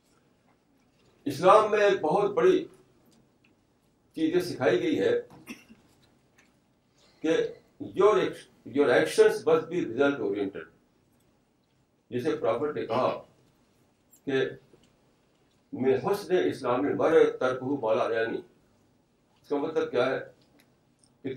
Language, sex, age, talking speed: Urdu, male, 60-79, 70 wpm